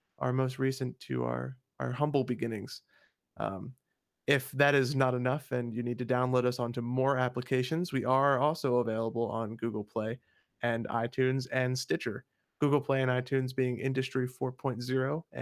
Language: English